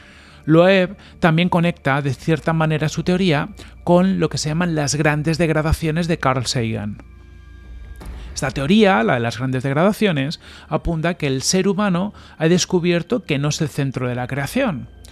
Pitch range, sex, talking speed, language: 125-170 Hz, male, 165 wpm, Spanish